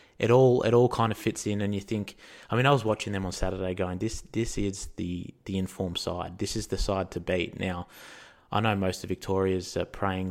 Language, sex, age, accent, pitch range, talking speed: English, male, 20-39, Australian, 90-105 Hz, 240 wpm